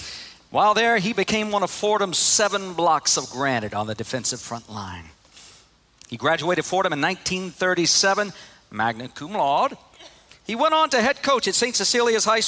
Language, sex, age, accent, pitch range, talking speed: English, male, 50-69, American, 130-215 Hz, 165 wpm